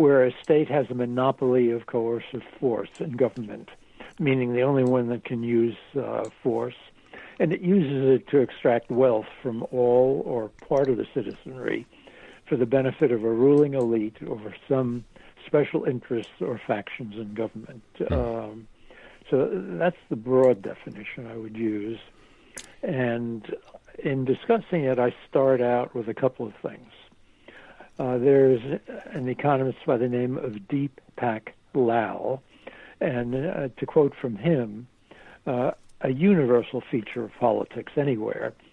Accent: American